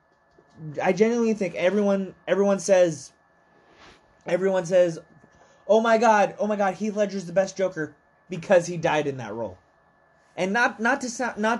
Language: English